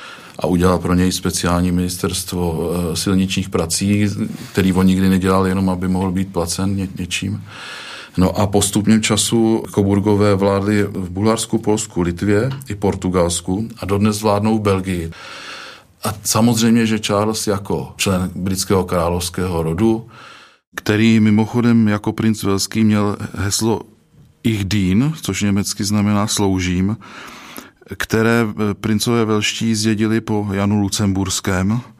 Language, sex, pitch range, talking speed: Czech, male, 95-110 Hz, 115 wpm